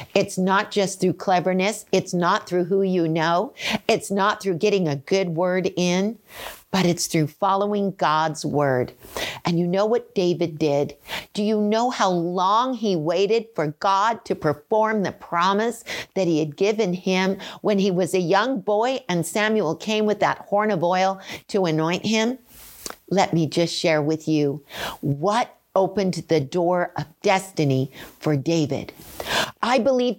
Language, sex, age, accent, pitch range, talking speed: English, female, 50-69, American, 170-220 Hz, 165 wpm